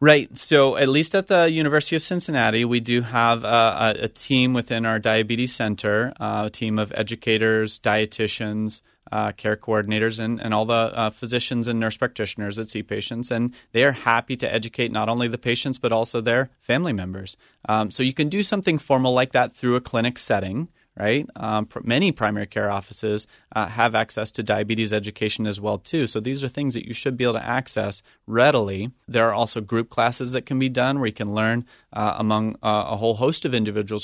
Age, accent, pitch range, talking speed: 30-49, American, 105-125 Hz, 205 wpm